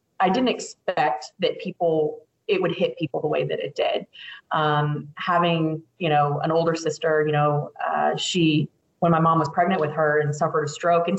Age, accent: 20-39, American